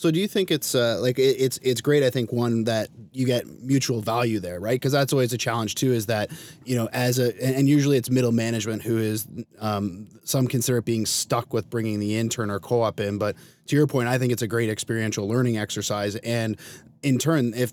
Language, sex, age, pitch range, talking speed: English, male, 30-49, 110-130 Hz, 230 wpm